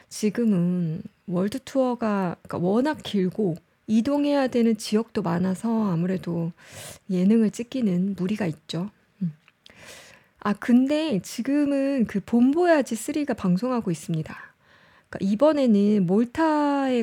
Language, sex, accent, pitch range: Korean, female, native, 190-265 Hz